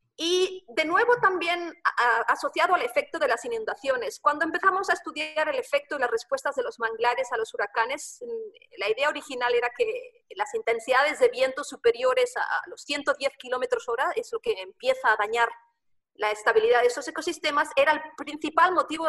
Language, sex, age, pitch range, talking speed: English, female, 40-59, 265-440 Hz, 175 wpm